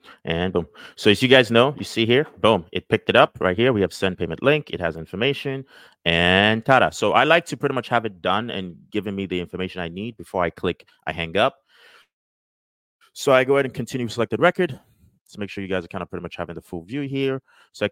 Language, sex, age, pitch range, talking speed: English, male, 30-49, 90-120 Hz, 250 wpm